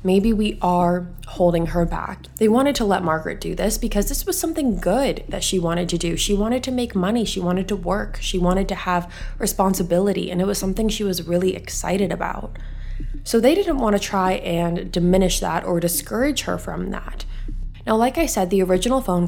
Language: English